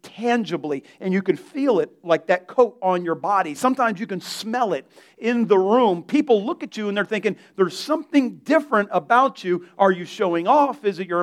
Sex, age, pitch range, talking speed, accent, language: male, 40-59, 195-270 Hz, 210 wpm, American, English